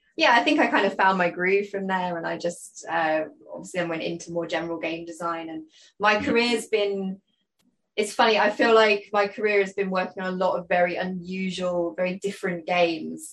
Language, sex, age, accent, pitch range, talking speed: English, female, 20-39, British, 175-210 Hz, 210 wpm